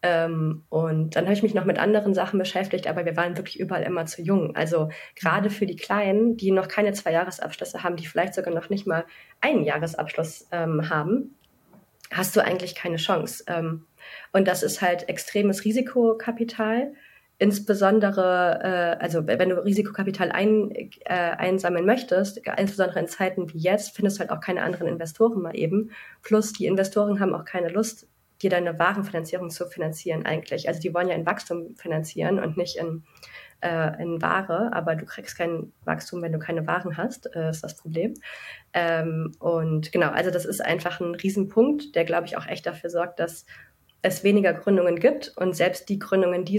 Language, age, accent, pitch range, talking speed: German, 30-49, German, 165-200 Hz, 180 wpm